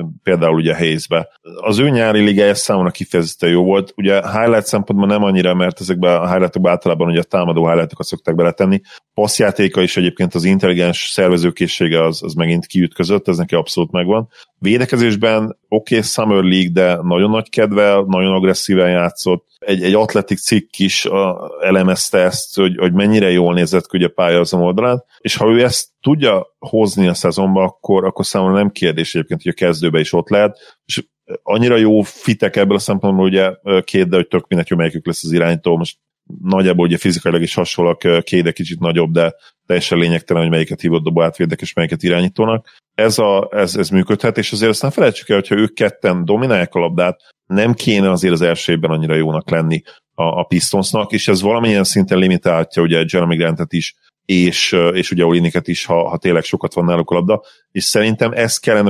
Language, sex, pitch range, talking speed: Hungarian, male, 85-100 Hz, 180 wpm